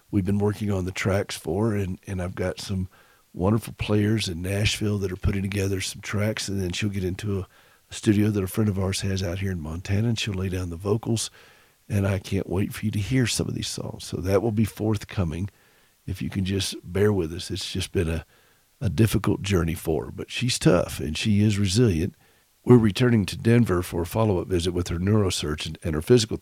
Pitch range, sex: 90-105 Hz, male